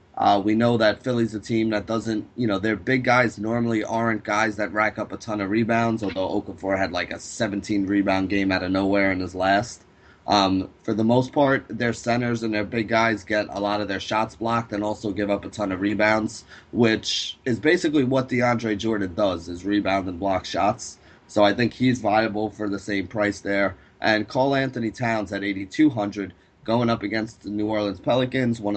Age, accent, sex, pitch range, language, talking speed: 30-49, American, male, 100-115 Hz, English, 205 wpm